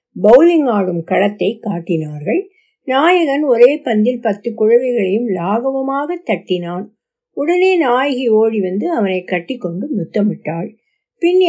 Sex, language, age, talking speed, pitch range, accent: female, Tamil, 60-79, 105 wpm, 190-270 Hz, native